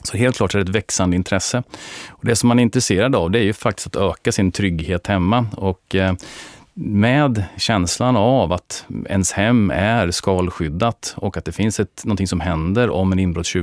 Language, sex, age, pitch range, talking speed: Swedish, male, 30-49, 90-110 Hz, 190 wpm